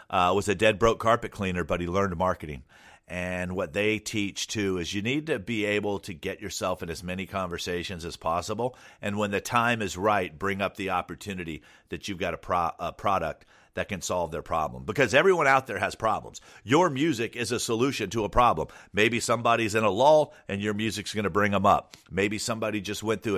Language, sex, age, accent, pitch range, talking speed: English, male, 50-69, American, 90-115 Hz, 215 wpm